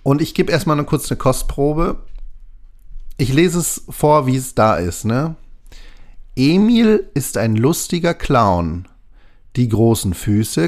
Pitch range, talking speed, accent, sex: 100-140 Hz, 145 wpm, German, male